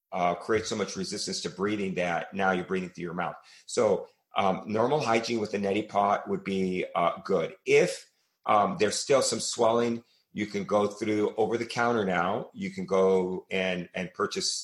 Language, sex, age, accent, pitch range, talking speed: English, male, 40-59, American, 90-105 Hz, 190 wpm